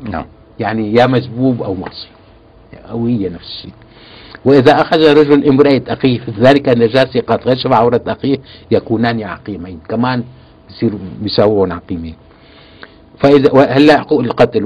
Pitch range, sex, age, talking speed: 100-140 Hz, male, 60-79, 125 wpm